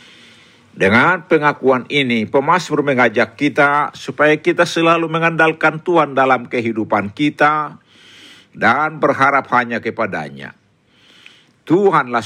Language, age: Indonesian, 50-69